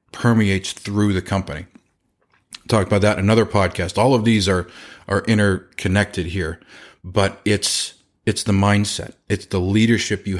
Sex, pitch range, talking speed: male, 95-115 Hz, 150 wpm